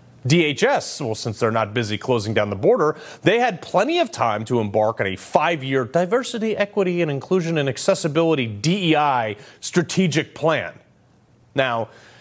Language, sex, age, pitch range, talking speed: English, male, 30-49, 125-205 Hz, 145 wpm